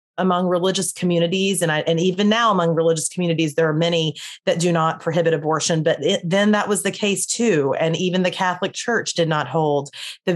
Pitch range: 155-185 Hz